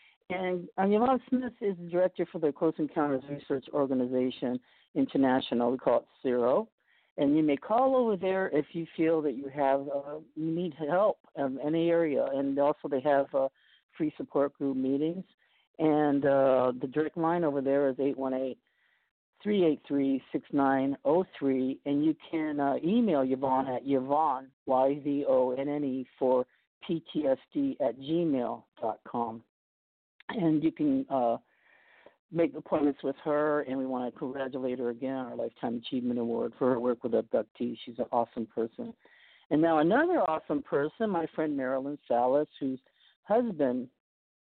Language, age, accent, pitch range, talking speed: English, 50-69, American, 135-165 Hz, 140 wpm